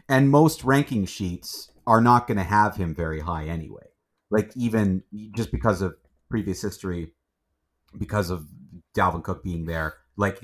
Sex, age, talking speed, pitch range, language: male, 30-49, 155 wpm, 80-105 Hz, English